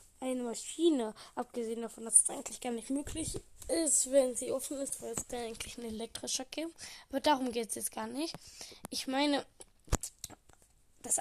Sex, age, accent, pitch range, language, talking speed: female, 10-29, German, 235-280 Hz, German, 170 wpm